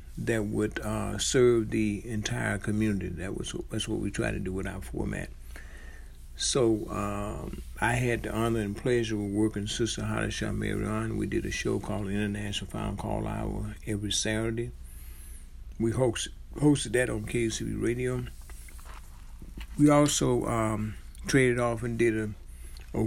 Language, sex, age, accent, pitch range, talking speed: English, male, 60-79, American, 80-115 Hz, 150 wpm